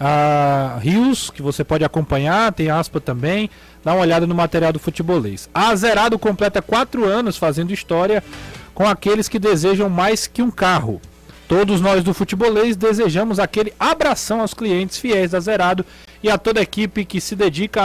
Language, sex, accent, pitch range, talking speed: Portuguese, male, Brazilian, 175-220 Hz, 170 wpm